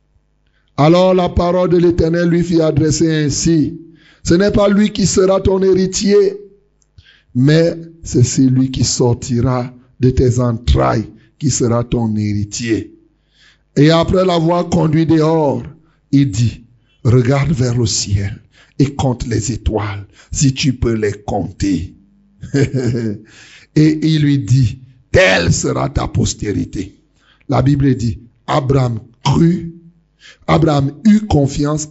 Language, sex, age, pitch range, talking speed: French, male, 60-79, 125-170 Hz, 120 wpm